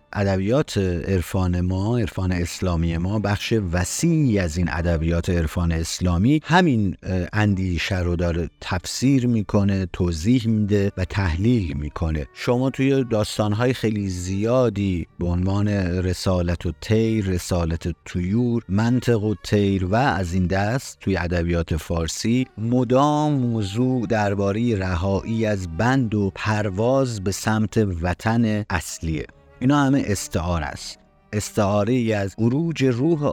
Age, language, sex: 50-69, Persian, male